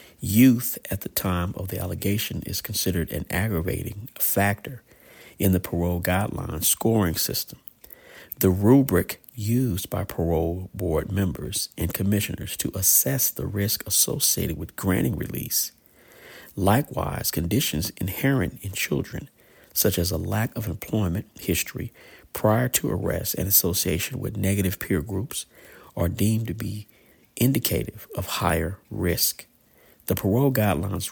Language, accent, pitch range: English, American, 90-110 Hz